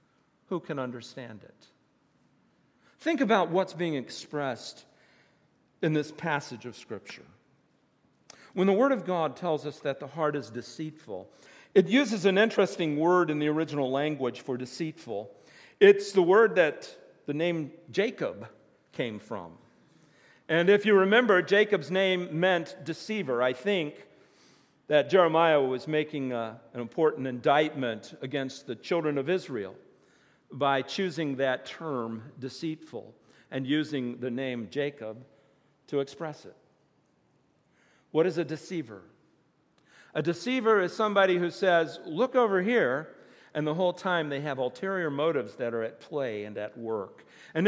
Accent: American